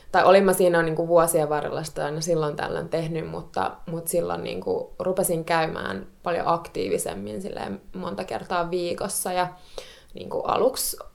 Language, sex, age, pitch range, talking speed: Finnish, female, 20-39, 165-200 Hz, 145 wpm